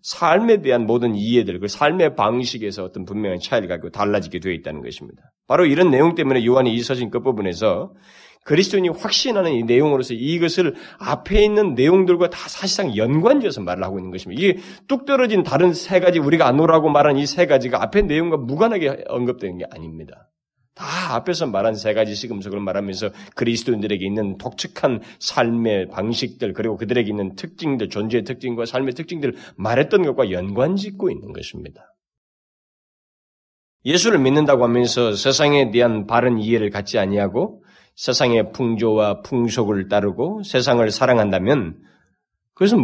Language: Korean